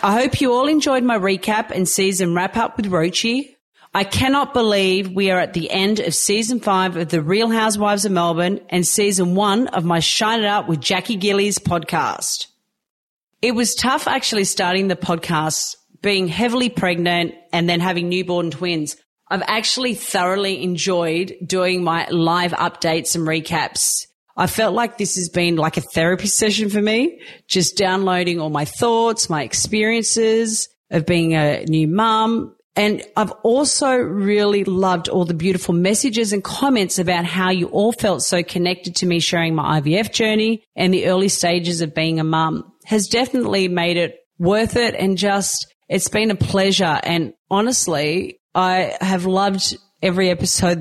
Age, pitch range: 30-49, 175-215 Hz